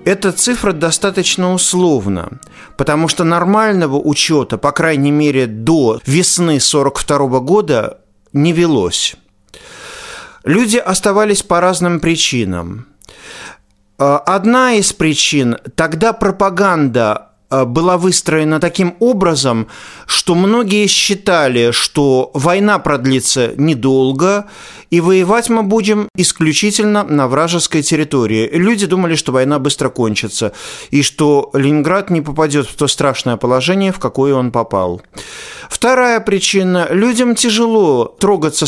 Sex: male